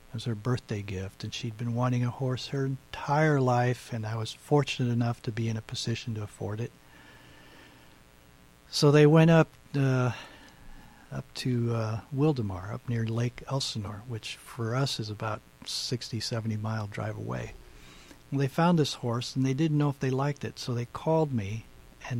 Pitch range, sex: 105-140 Hz, male